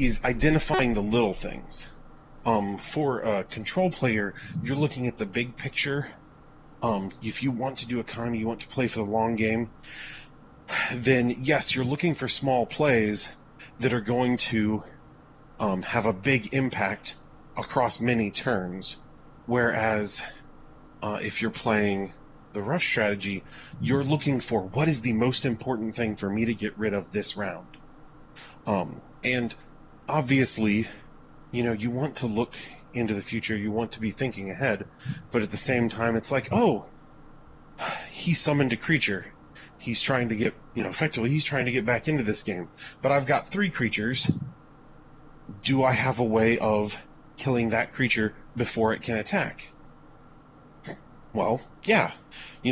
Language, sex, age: English, male, 30-49